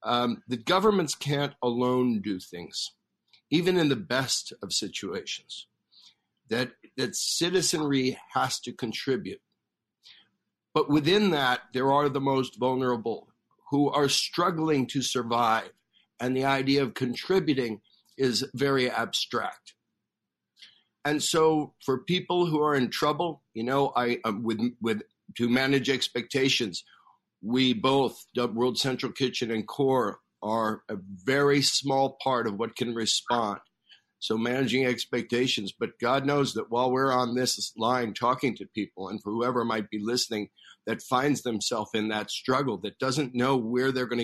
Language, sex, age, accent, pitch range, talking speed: English, male, 60-79, American, 120-140 Hz, 145 wpm